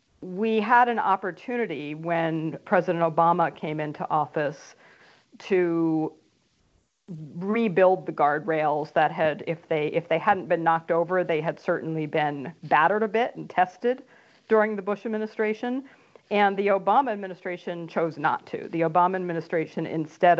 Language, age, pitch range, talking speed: English, 50-69, 160-190 Hz, 140 wpm